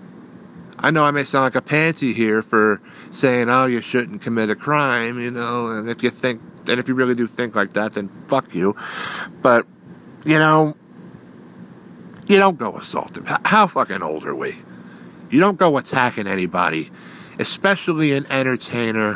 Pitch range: 90-125 Hz